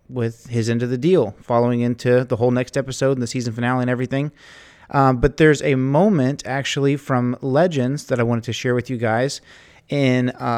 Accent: American